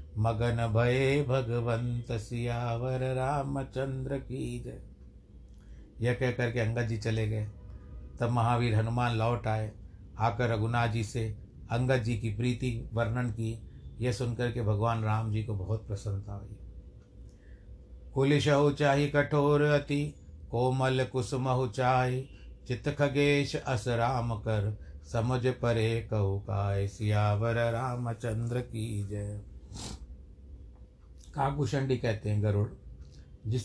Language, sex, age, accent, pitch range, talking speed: Hindi, male, 60-79, native, 100-130 Hz, 115 wpm